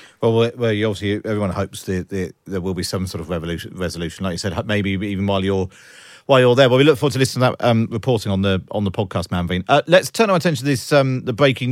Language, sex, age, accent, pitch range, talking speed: English, male, 40-59, British, 95-130 Hz, 265 wpm